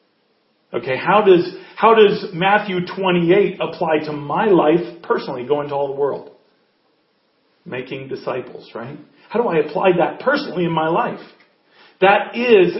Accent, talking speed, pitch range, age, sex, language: American, 145 wpm, 155-200 Hz, 40-59, male, English